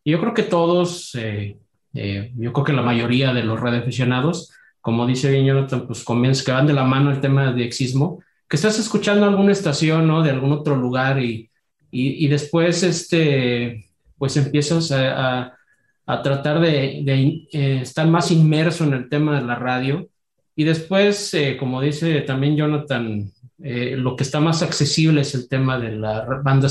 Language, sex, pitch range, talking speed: Spanish, male, 125-150 Hz, 185 wpm